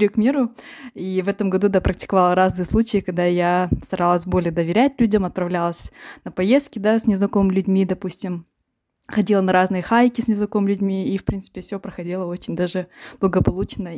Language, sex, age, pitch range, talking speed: Russian, female, 20-39, 180-215 Hz, 170 wpm